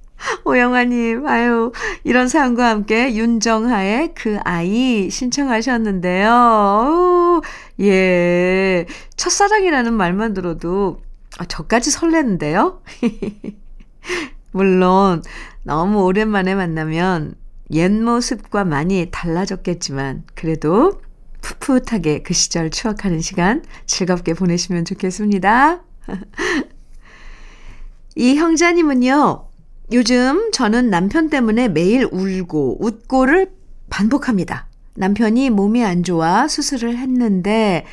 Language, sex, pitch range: Korean, female, 180-250 Hz